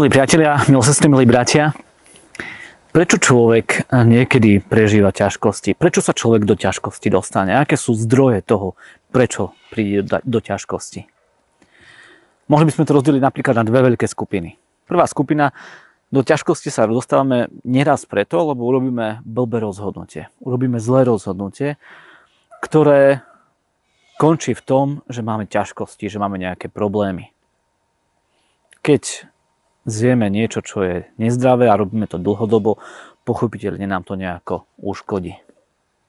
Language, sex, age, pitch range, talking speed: Slovak, male, 30-49, 105-145 Hz, 125 wpm